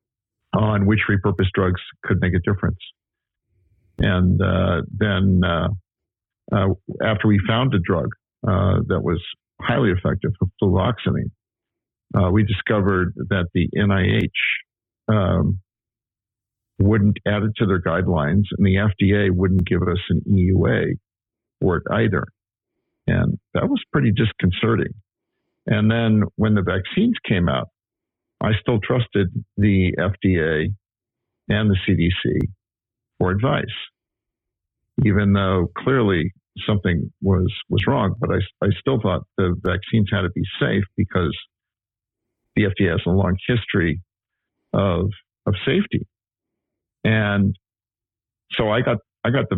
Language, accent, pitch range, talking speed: English, American, 95-110 Hz, 125 wpm